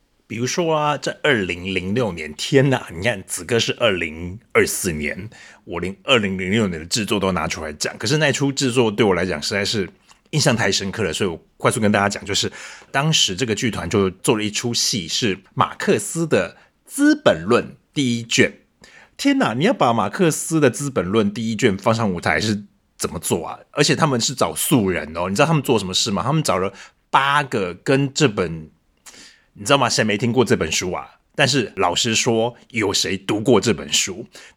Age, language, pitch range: 30-49, Chinese, 95-145 Hz